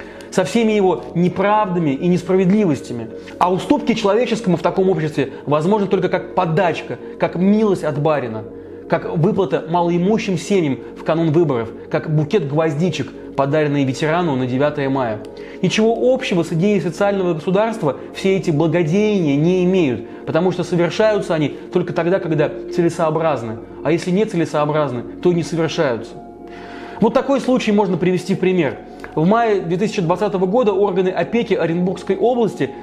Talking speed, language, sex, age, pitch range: 140 wpm, Russian, male, 20-39, 160-200 Hz